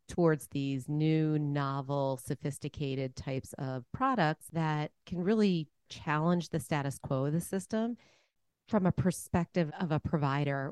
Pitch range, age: 135-170 Hz, 40-59